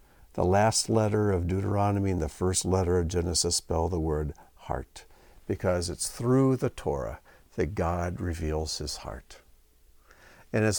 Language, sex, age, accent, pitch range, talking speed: English, male, 60-79, American, 85-110 Hz, 150 wpm